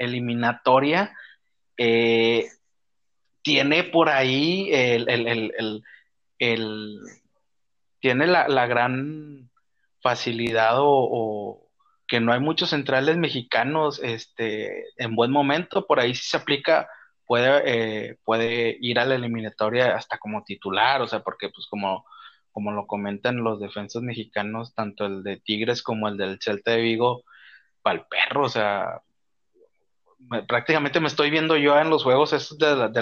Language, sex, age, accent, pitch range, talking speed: Spanish, male, 30-49, Mexican, 115-145 Hz, 145 wpm